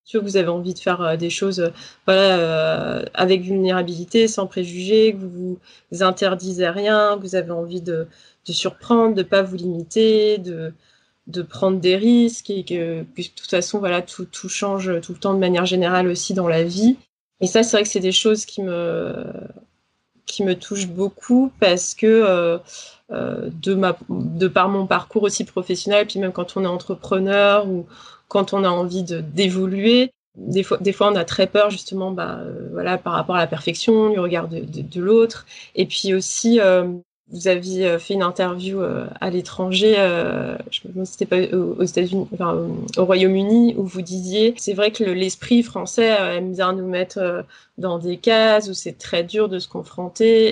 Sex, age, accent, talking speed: female, 20-39, French, 195 wpm